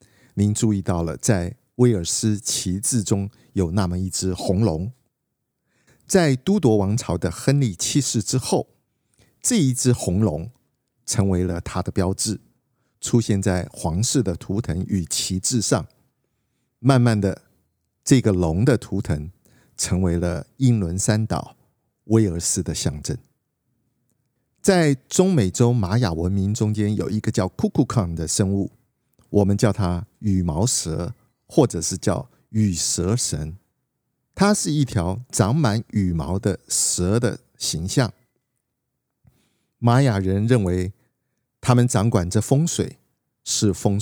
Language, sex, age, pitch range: Chinese, male, 50-69, 95-125 Hz